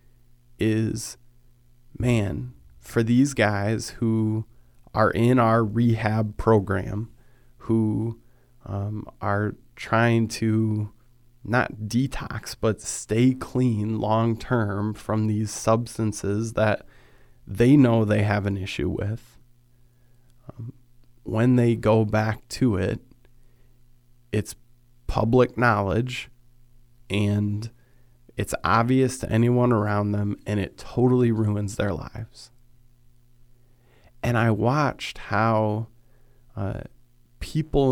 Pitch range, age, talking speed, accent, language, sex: 110-120 Hz, 30-49, 100 wpm, American, English, male